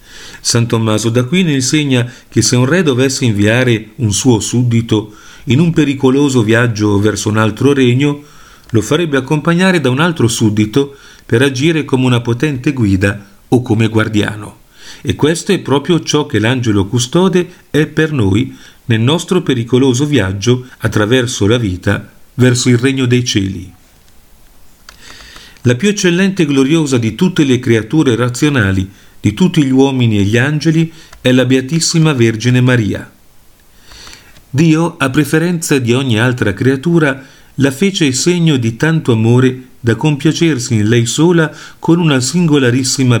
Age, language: 40-59, Italian